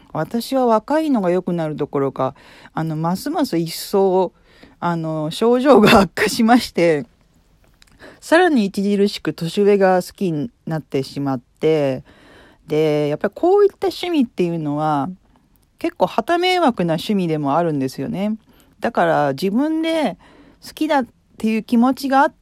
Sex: female